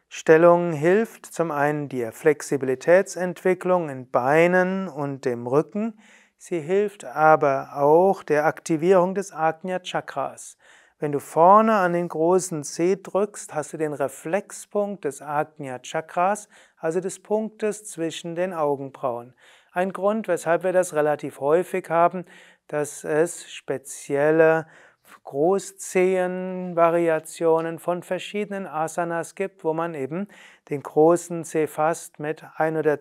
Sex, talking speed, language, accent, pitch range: male, 125 wpm, German, German, 145-180 Hz